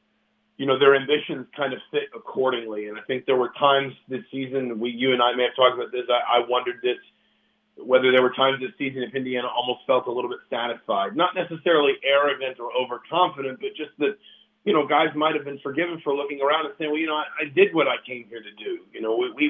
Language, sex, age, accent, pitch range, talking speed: English, male, 40-59, American, 125-145 Hz, 240 wpm